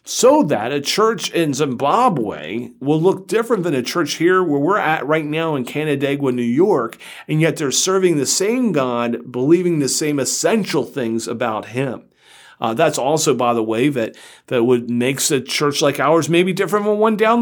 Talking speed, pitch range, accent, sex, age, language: 190 wpm, 125-175 Hz, American, male, 40-59, English